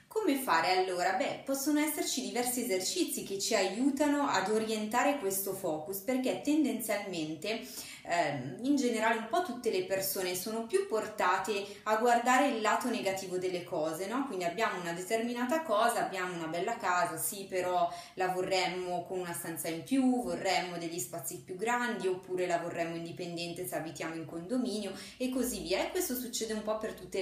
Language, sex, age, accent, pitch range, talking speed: Italian, female, 20-39, native, 185-250 Hz, 170 wpm